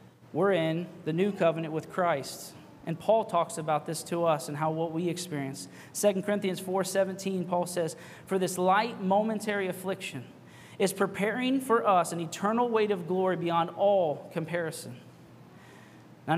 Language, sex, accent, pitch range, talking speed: English, male, American, 165-200 Hz, 160 wpm